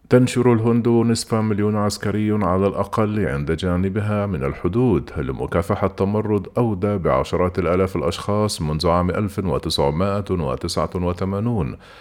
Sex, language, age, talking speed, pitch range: male, Arabic, 40-59, 100 wpm, 90-110 Hz